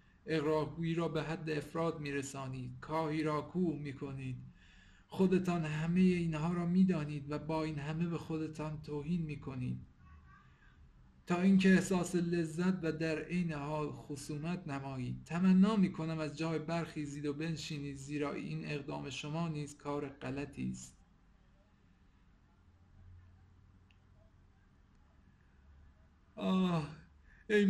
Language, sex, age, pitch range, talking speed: Persian, male, 50-69, 135-175 Hz, 105 wpm